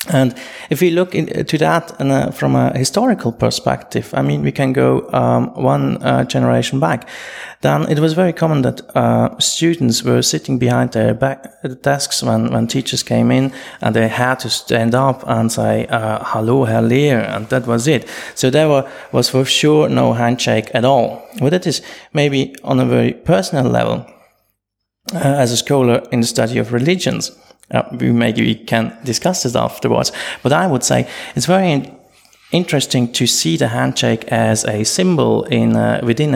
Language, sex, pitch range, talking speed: English, male, 110-135 Hz, 185 wpm